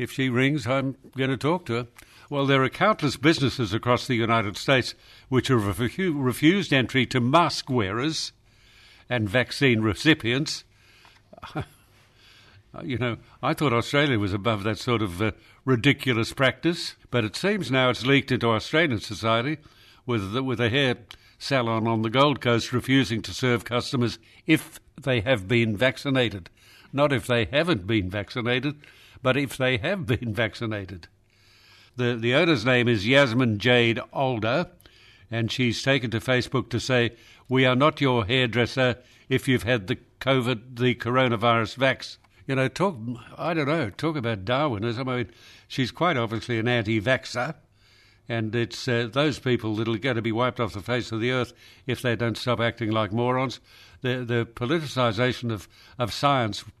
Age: 60-79